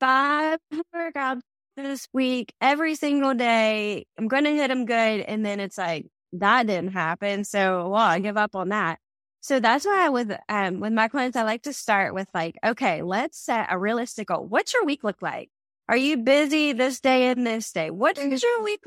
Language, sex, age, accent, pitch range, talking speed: English, female, 10-29, American, 210-270 Hz, 205 wpm